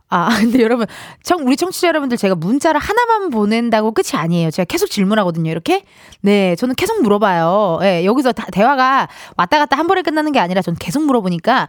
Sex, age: female, 20-39